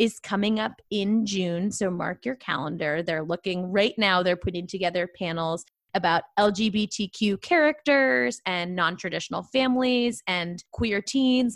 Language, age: English, 20-39